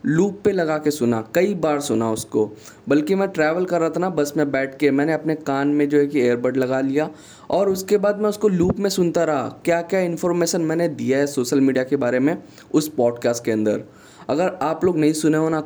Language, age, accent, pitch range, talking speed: Hindi, 10-29, native, 130-170 Hz, 235 wpm